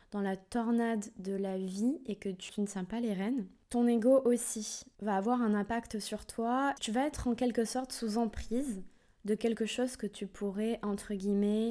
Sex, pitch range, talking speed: female, 200-235 Hz, 200 wpm